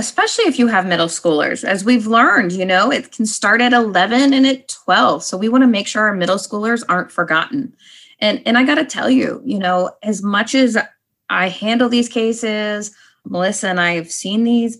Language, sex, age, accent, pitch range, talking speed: English, female, 20-39, American, 170-225 Hz, 210 wpm